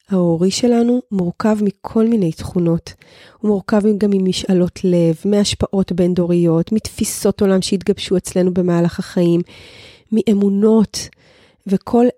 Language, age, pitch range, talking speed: Hebrew, 20-39, 185-235 Hz, 105 wpm